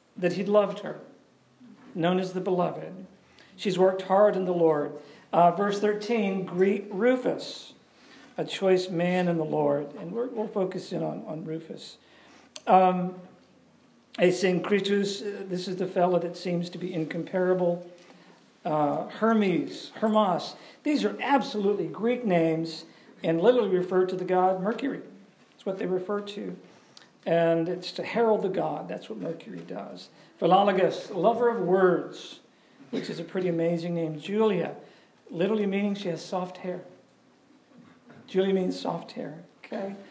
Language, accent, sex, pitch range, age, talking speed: English, American, male, 180-215 Hz, 50-69, 145 wpm